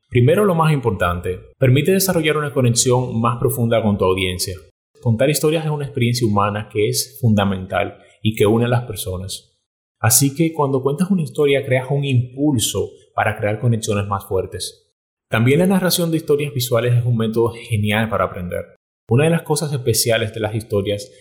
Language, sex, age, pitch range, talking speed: Spanish, male, 30-49, 105-140 Hz, 175 wpm